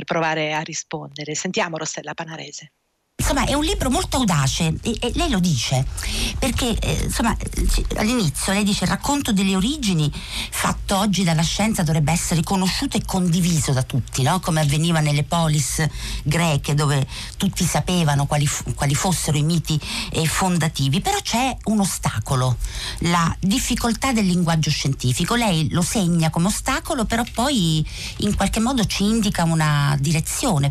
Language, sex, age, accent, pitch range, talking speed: Italian, female, 50-69, native, 155-200 Hz, 145 wpm